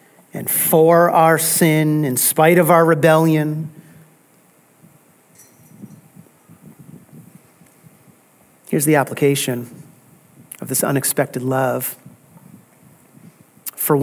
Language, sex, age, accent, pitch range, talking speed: English, male, 40-59, American, 155-205 Hz, 75 wpm